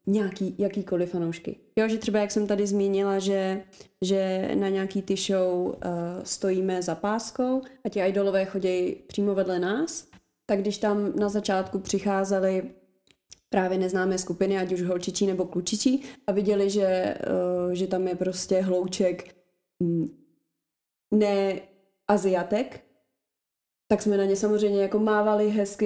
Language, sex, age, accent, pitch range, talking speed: Czech, female, 30-49, native, 190-220 Hz, 140 wpm